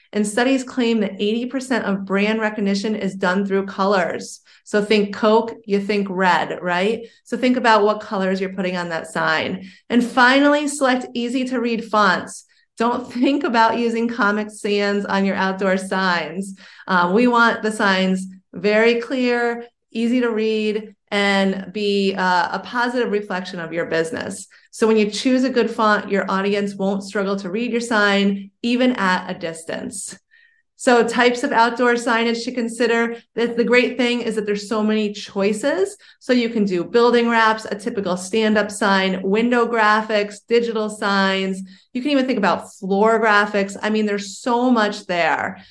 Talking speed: 165 wpm